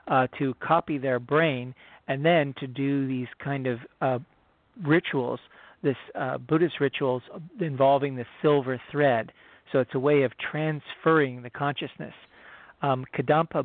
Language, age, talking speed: English, 40-59, 140 wpm